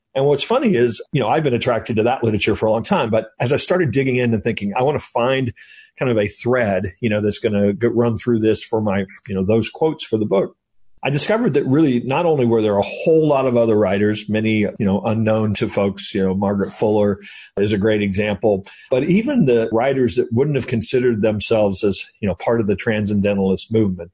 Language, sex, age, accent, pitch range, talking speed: English, male, 40-59, American, 105-125 Hz, 235 wpm